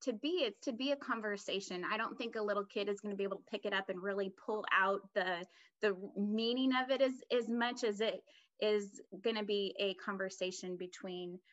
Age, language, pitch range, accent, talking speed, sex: 20-39, English, 195-245 Hz, American, 225 wpm, female